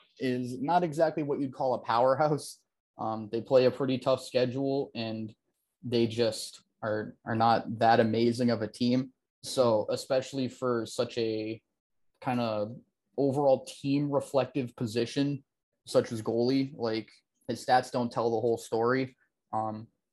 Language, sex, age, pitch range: English, male, 20-39, 115-130 Hz